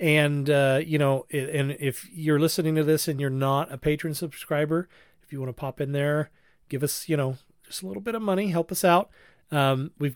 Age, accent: 40-59, American